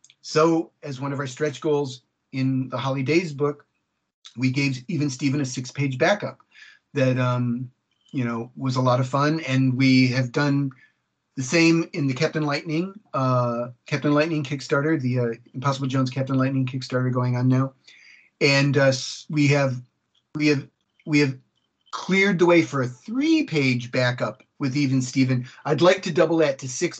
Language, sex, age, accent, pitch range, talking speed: English, male, 40-59, American, 130-155 Hz, 170 wpm